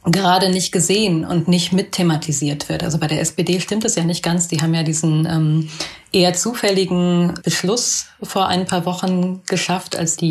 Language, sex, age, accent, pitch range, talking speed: German, female, 30-49, German, 165-185 Hz, 185 wpm